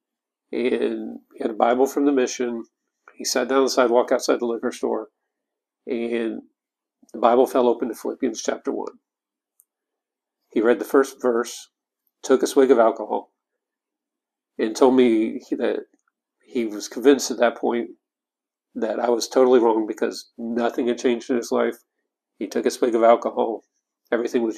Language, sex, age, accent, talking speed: English, male, 50-69, American, 165 wpm